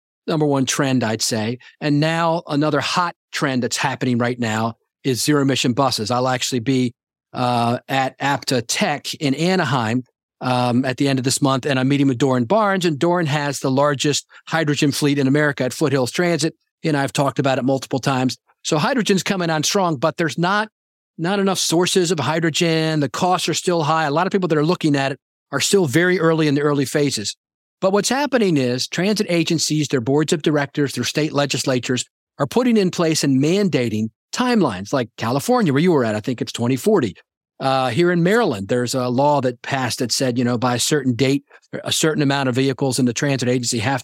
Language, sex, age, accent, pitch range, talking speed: English, male, 40-59, American, 130-175 Hz, 205 wpm